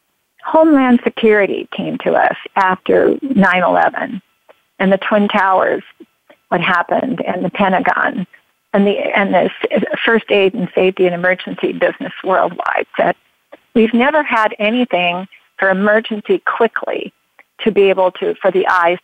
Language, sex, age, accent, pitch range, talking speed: English, female, 40-59, American, 190-225 Hz, 130 wpm